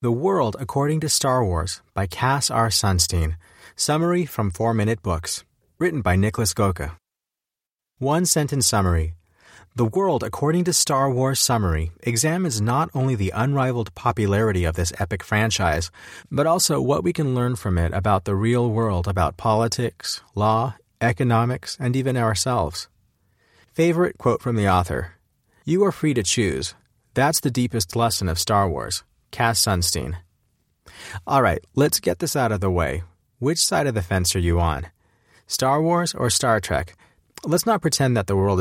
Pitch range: 95-130 Hz